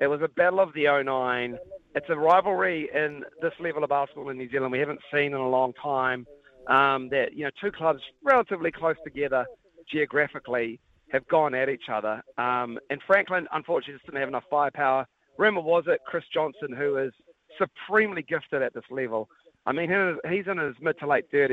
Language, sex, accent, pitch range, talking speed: English, male, Australian, 135-165 Hz, 190 wpm